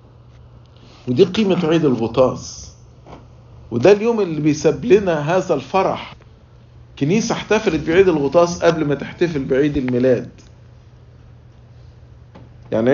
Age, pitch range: 50-69, 120-175 Hz